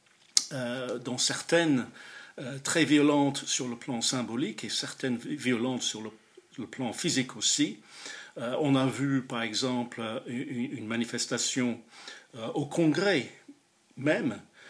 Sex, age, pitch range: male, 50-69, 120-155 Hz